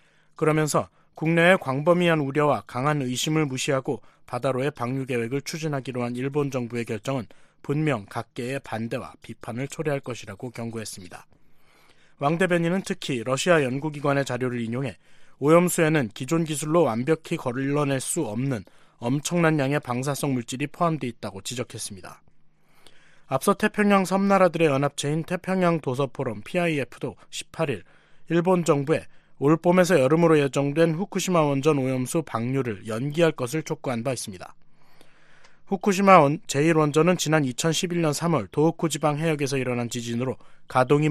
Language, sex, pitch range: Korean, male, 125-165 Hz